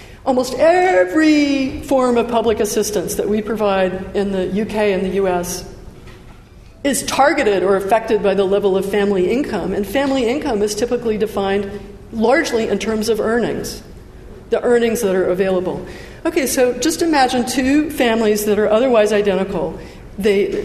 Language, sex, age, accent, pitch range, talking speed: English, female, 50-69, American, 195-240 Hz, 150 wpm